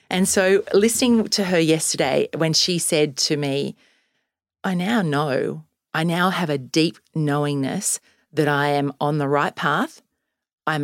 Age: 40-59